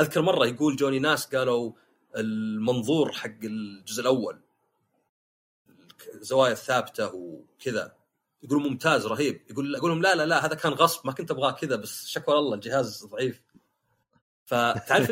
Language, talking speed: Arabic, 140 wpm